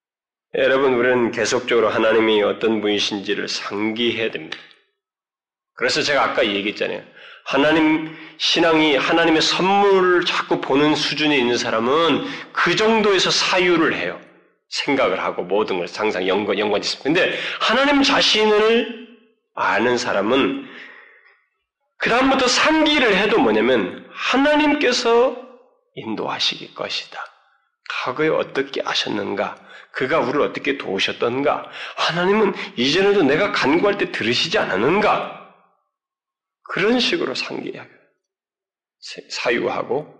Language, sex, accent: Korean, male, native